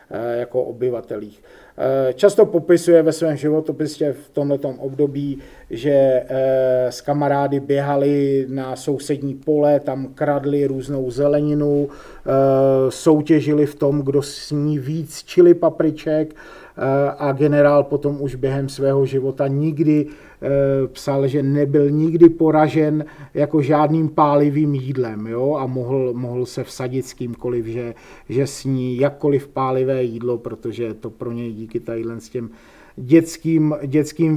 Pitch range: 125-150 Hz